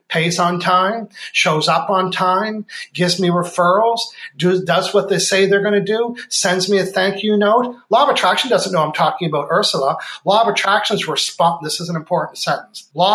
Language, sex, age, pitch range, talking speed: English, male, 40-59, 170-210 Hz, 200 wpm